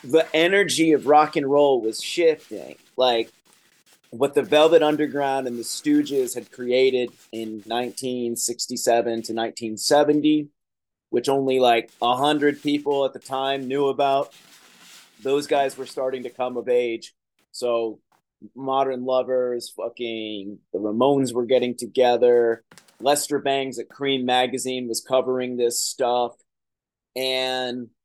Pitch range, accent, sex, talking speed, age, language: 120-150 Hz, American, male, 130 wpm, 30-49, English